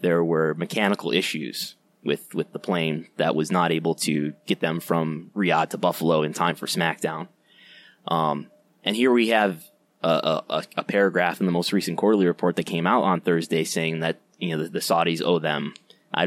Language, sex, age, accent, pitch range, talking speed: English, male, 20-39, American, 85-105 Hz, 195 wpm